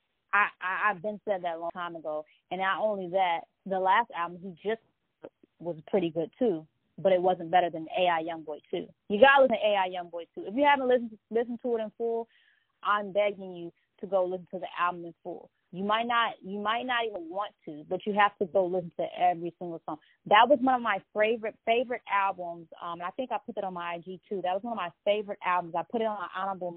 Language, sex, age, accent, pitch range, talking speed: English, female, 20-39, American, 175-225 Hz, 250 wpm